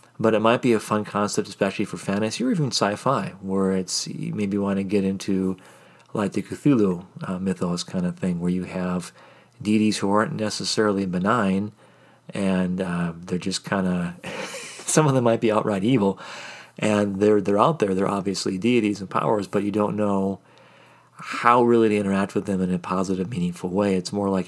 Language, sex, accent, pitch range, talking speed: English, male, American, 95-110 Hz, 190 wpm